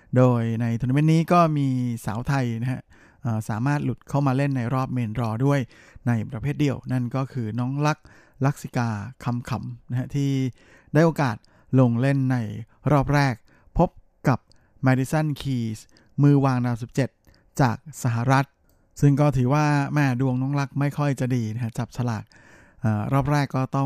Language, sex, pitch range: Thai, male, 115-140 Hz